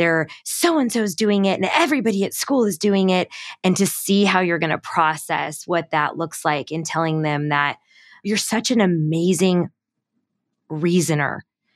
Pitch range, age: 160-195 Hz, 20-39